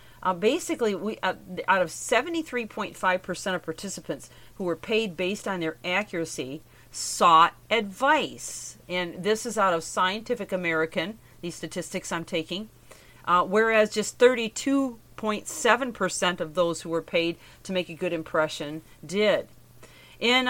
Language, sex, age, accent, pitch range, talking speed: English, female, 40-59, American, 165-225 Hz, 130 wpm